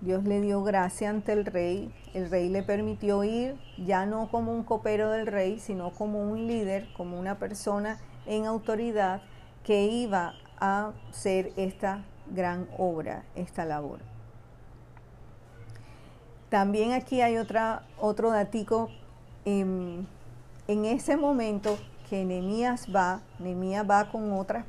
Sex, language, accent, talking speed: female, Spanish, American, 130 wpm